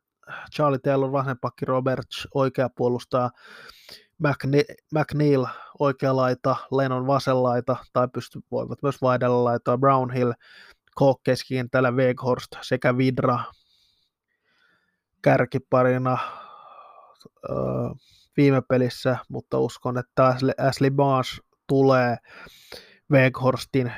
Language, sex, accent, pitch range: Finnish, male, native, 125-135 Hz